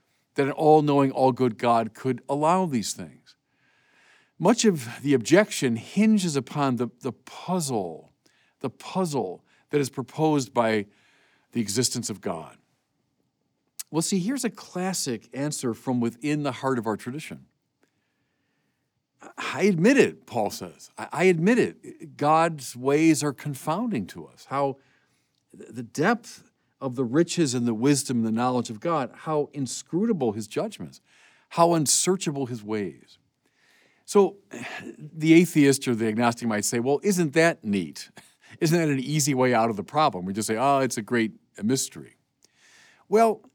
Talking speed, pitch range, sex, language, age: 145 wpm, 120-165 Hz, male, English, 50-69